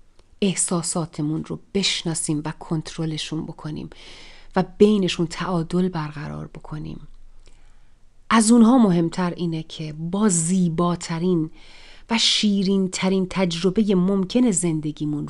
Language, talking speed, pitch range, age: Persian, 95 wpm, 155-205 Hz, 40-59